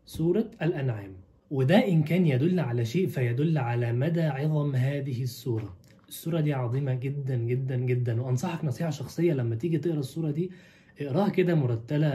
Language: Arabic